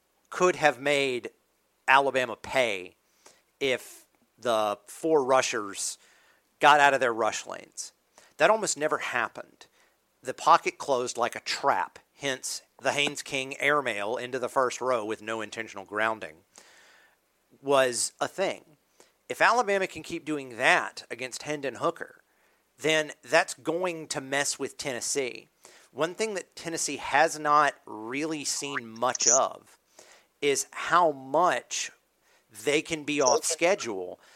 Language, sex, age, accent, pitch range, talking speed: English, male, 40-59, American, 125-160 Hz, 130 wpm